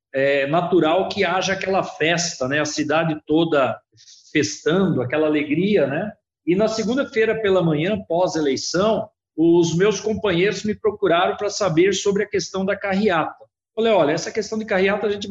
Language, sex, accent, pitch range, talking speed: Portuguese, male, Brazilian, 160-215 Hz, 155 wpm